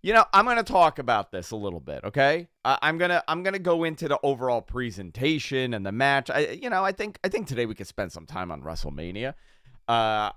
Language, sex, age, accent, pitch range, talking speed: English, male, 30-49, American, 115-150 Hz, 230 wpm